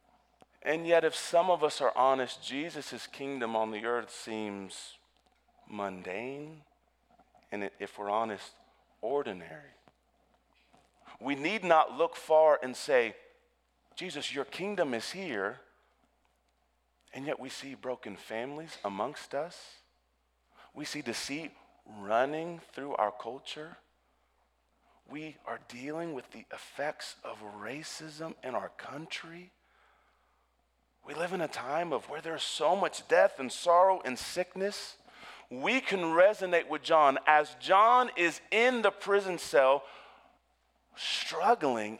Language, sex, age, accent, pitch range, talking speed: English, male, 40-59, American, 110-170 Hz, 125 wpm